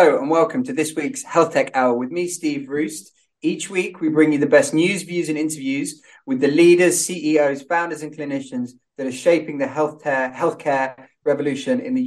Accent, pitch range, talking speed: British, 135-175 Hz, 195 wpm